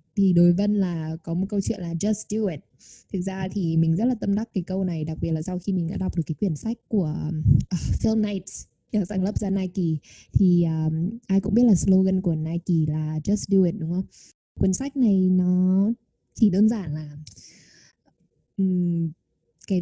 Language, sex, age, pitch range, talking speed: Vietnamese, female, 10-29, 170-215 Hz, 205 wpm